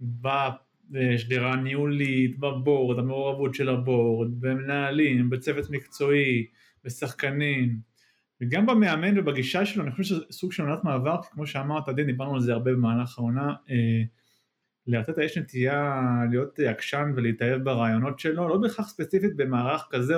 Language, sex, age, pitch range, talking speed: Hebrew, male, 30-49, 125-155 Hz, 130 wpm